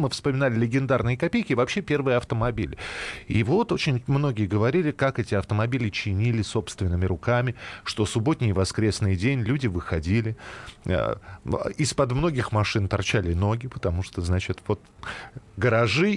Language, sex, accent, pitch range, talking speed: Russian, male, native, 105-150 Hz, 135 wpm